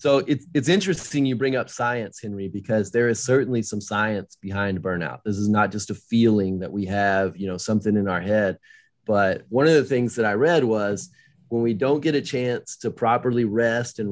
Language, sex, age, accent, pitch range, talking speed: English, male, 30-49, American, 110-135 Hz, 215 wpm